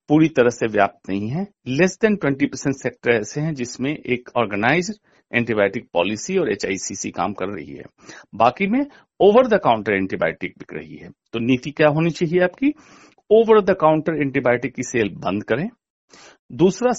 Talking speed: 175 wpm